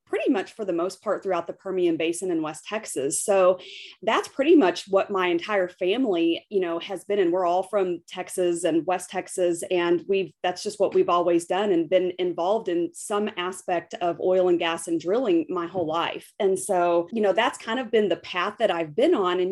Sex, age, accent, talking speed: female, 30-49, American, 220 wpm